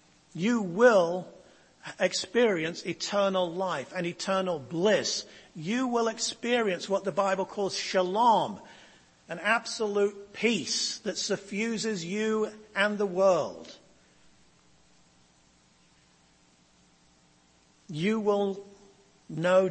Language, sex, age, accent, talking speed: English, male, 50-69, British, 85 wpm